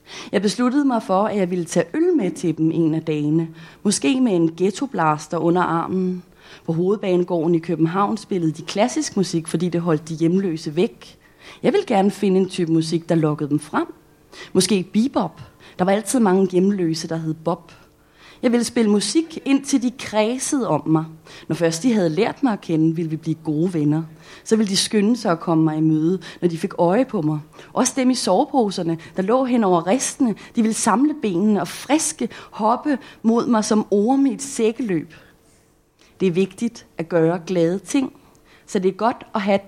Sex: female